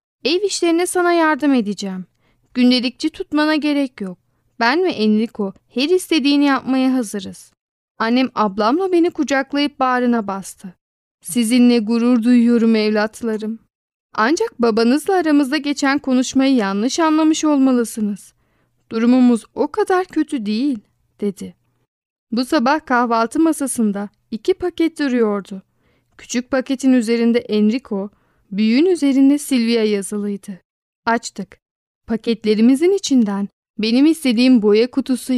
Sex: female